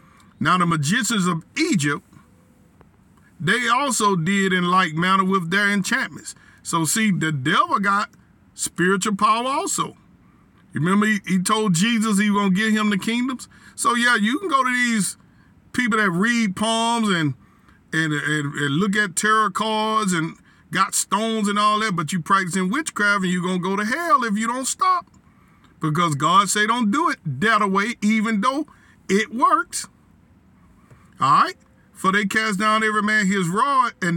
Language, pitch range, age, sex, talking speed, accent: English, 175-220 Hz, 50-69, male, 170 wpm, American